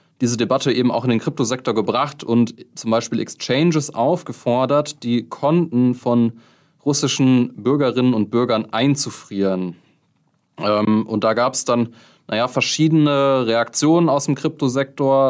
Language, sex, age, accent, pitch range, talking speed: German, male, 20-39, German, 110-140 Hz, 125 wpm